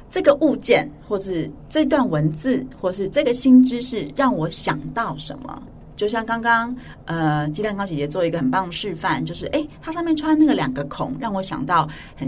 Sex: female